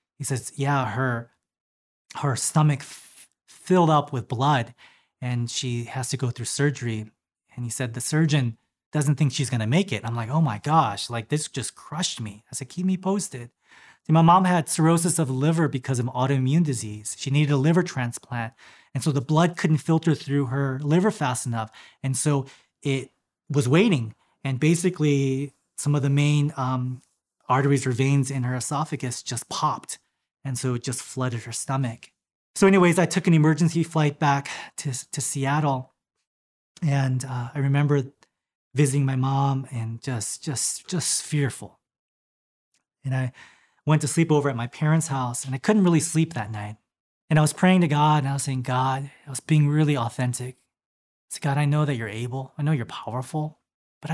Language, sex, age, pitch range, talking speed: English, male, 20-39, 125-155 Hz, 185 wpm